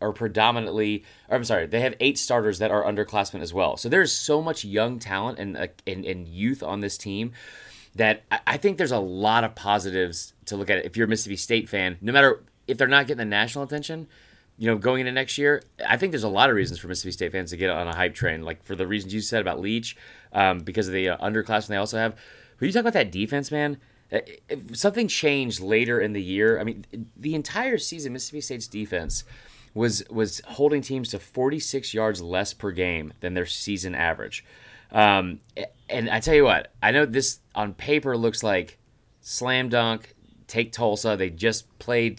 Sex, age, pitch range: male, 30-49, 100-125 Hz